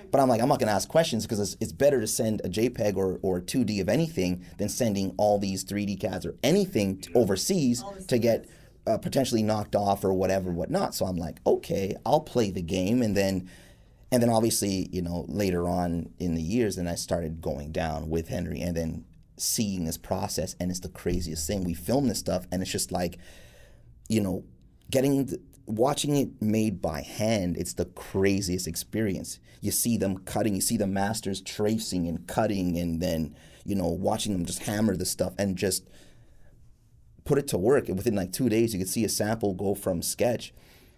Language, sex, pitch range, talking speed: English, male, 85-110 Hz, 200 wpm